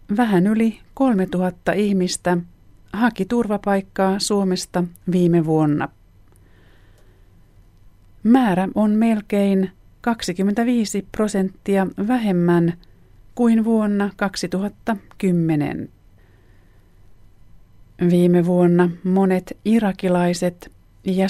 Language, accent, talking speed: Finnish, native, 65 wpm